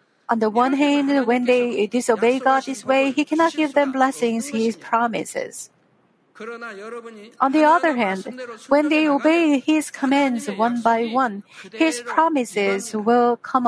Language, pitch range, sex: Korean, 225-280 Hz, female